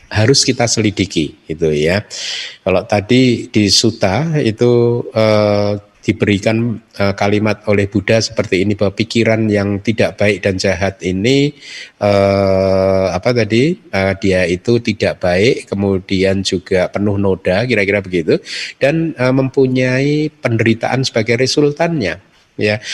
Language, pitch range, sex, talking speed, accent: Indonesian, 105-145 Hz, male, 125 wpm, native